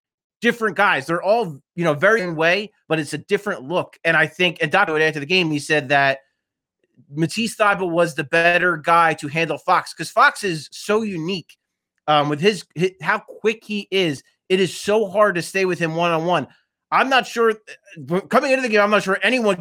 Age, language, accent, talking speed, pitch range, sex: 30-49, English, American, 205 wpm, 160-200 Hz, male